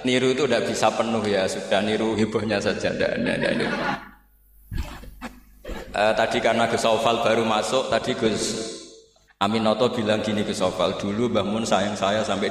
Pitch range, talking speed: 110-130 Hz, 170 wpm